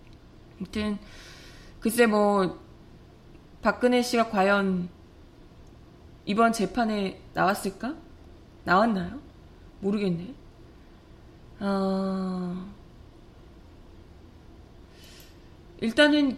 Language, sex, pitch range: Korean, female, 190-275 Hz